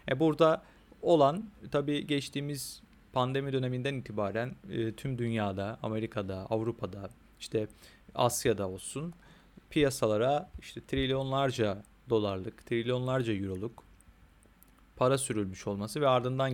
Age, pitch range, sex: 40-59, 110-135 Hz, male